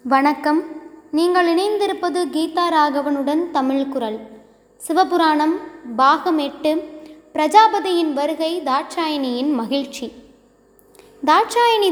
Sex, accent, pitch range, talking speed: female, native, 275-355 Hz, 75 wpm